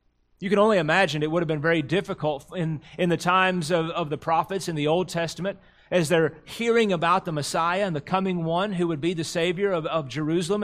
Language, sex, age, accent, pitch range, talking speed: English, male, 30-49, American, 140-190 Hz, 225 wpm